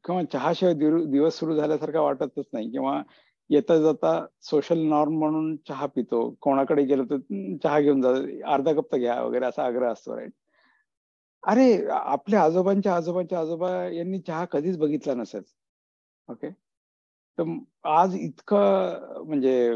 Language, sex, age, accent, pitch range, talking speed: Marathi, male, 60-79, native, 135-175 Hz, 135 wpm